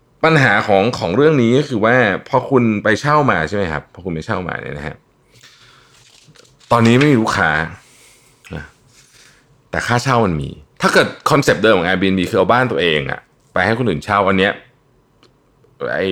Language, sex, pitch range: Thai, male, 90-125 Hz